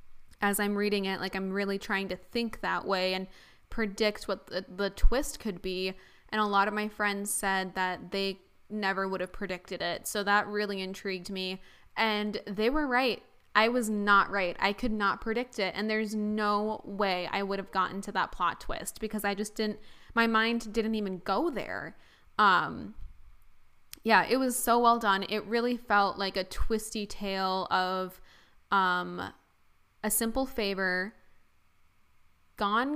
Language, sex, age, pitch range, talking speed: English, female, 10-29, 190-225 Hz, 170 wpm